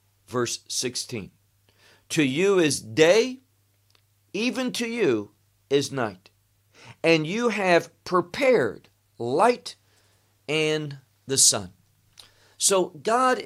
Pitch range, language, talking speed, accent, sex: 105-170 Hz, English, 95 wpm, American, male